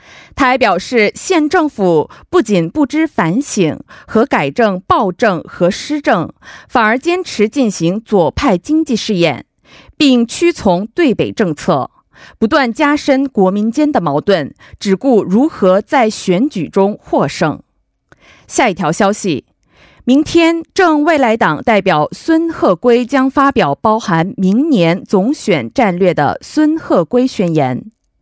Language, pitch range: Korean, 190-295 Hz